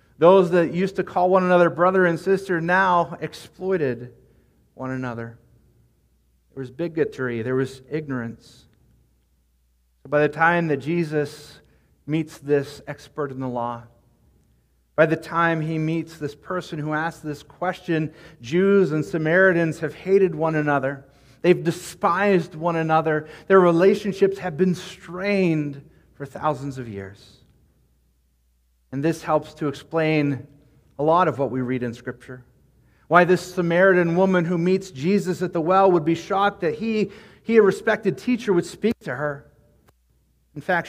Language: English